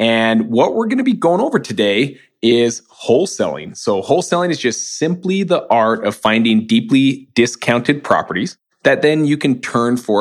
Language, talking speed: English, 170 wpm